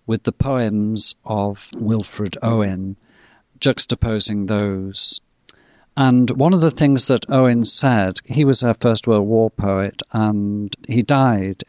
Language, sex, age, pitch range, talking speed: English, male, 50-69, 100-115 Hz, 135 wpm